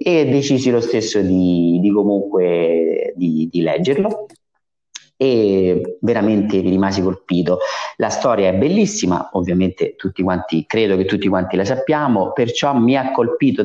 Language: Italian